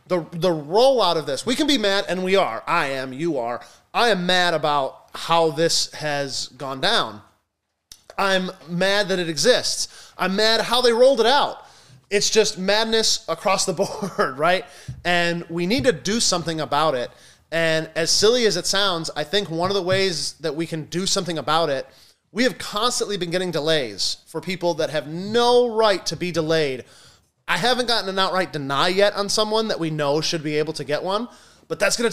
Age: 30-49